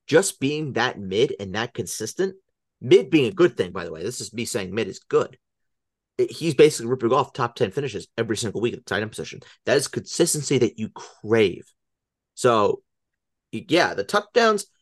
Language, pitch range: English, 95-135 Hz